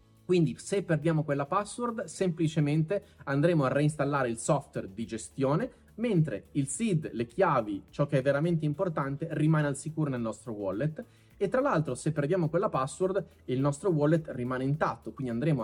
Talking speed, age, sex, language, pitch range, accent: 165 wpm, 30-49, male, Italian, 130-180 Hz, native